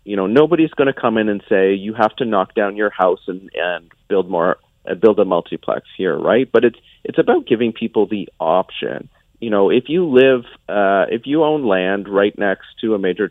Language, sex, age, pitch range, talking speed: English, male, 40-59, 100-125 Hz, 220 wpm